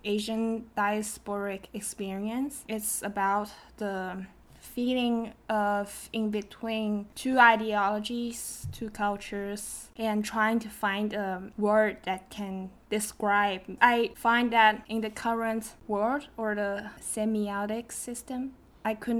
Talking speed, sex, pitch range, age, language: 115 wpm, female, 210-240 Hz, 10-29, English